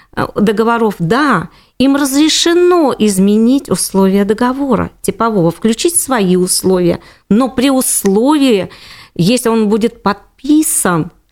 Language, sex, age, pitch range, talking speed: Russian, female, 40-59, 185-235 Hz, 95 wpm